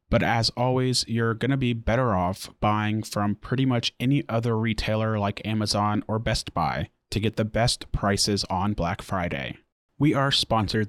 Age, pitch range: 30-49, 105-125 Hz